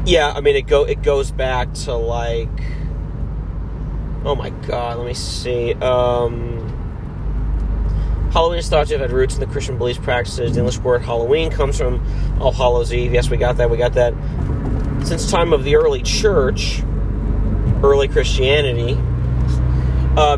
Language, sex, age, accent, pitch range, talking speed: English, male, 30-49, American, 105-130 Hz, 160 wpm